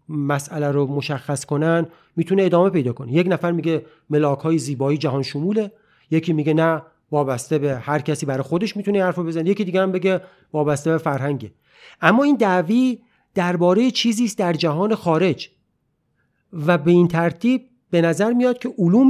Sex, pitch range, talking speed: male, 145-195 Hz, 165 wpm